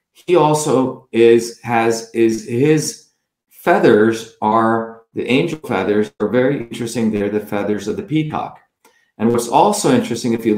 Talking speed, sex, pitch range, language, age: 145 wpm, male, 105-120 Hz, English, 40-59